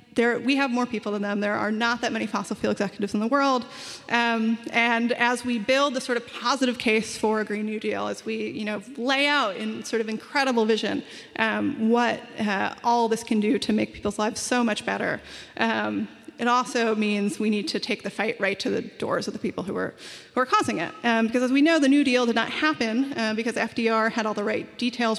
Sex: female